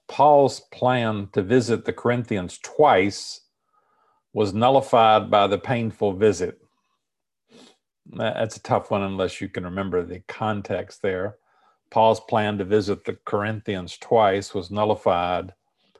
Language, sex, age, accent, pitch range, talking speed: English, male, 50-69, American, 100-120 Hz, 125 wpm